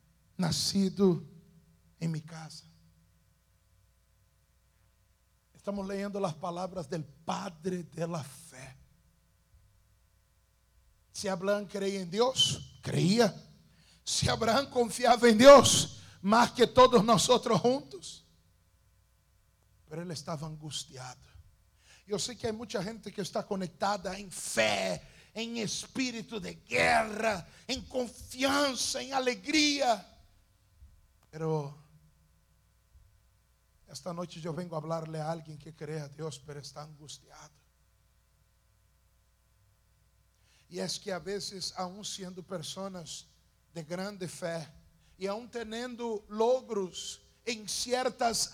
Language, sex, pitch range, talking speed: English, male, 135-210 Hz, 105 wpm